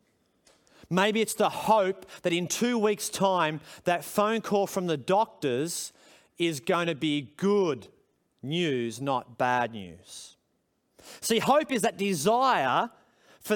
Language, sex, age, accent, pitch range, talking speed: English, male, 30-49, Australian, 175-235 Hz, 135 wpm